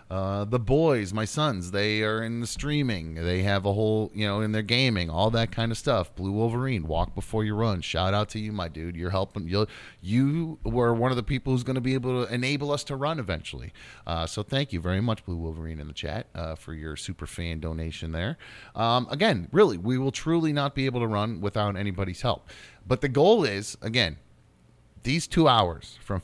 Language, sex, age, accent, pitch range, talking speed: English, male, 30-49, American, 95-135 Hz, 220 wpm